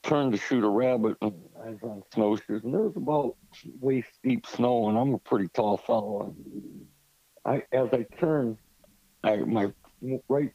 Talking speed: 175 wpm